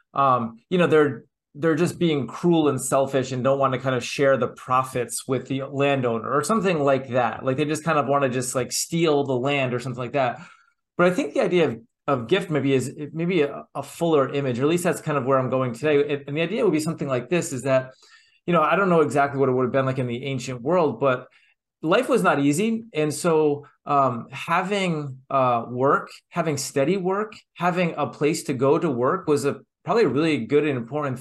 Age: 30-49